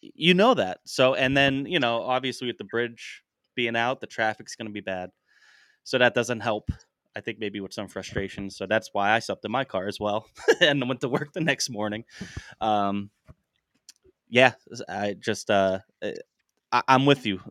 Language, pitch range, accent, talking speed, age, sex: English, 105-130 Hz, American, 190 wpm, 20-39, male